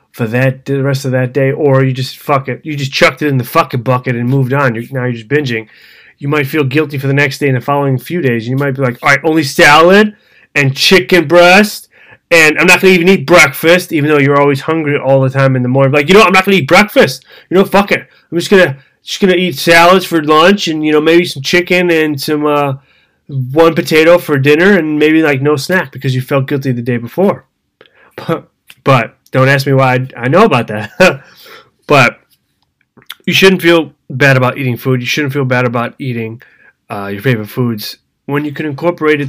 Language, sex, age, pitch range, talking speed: English, male, 20-39, 130-160 Hz, 230 wpm